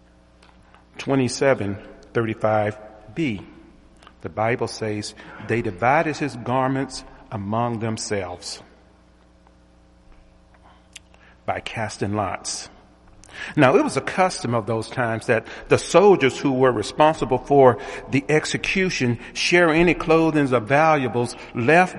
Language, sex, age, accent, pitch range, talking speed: English, male, 50-69, American, 105-140 Hz, 105 wpm